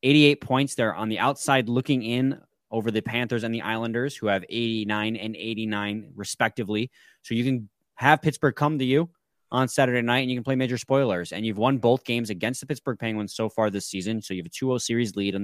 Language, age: English, 20-39